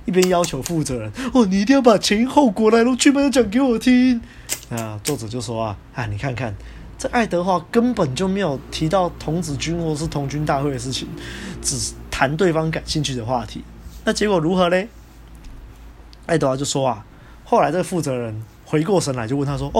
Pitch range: 125-185 Hz